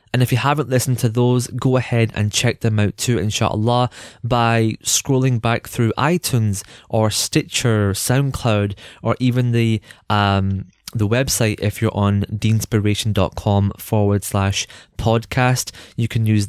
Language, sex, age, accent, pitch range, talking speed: English, male, 20-39, British, 105-120 Hz, 140 wpm